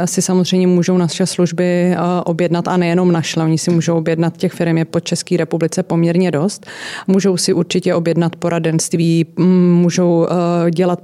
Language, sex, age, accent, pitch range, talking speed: Czech, female, 30-49, native, 170-180 Hz, 150 wpm